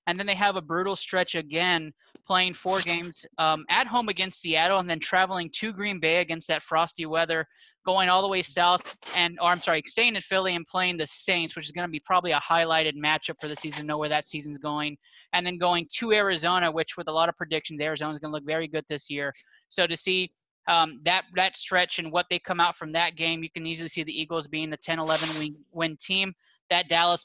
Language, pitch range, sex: English, 160-190 Hz, male